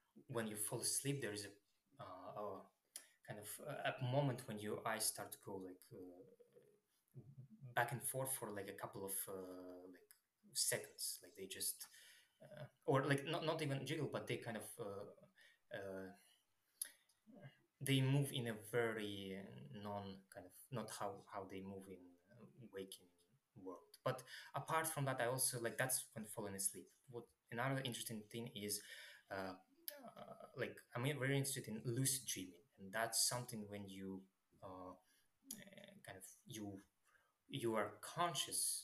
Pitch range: 100-135 Hz